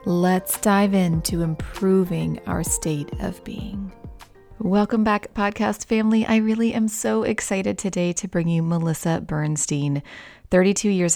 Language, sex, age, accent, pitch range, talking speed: English, female, 30-49, American, 155-185 Hz, 135 wpm